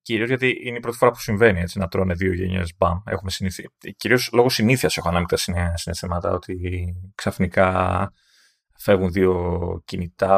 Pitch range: 95-135 Hz